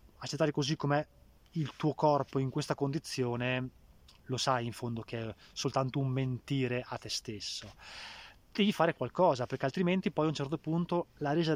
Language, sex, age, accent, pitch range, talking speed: Italian, male, 20-39, native, 125-150 Hz, 170 wpm